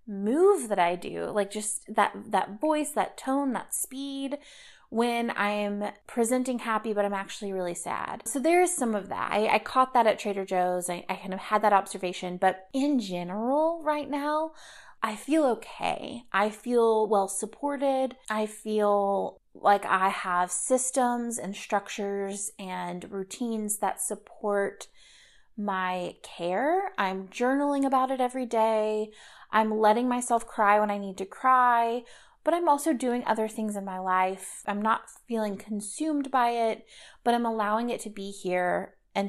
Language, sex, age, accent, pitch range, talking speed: English, female, 20-39, American, 200-255 Hz, 160 wpm